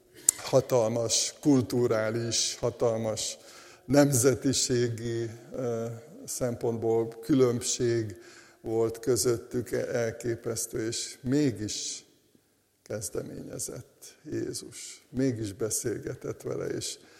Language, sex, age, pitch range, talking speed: Hungarian, male, 60-79, 115-135 Hz, 60 wpm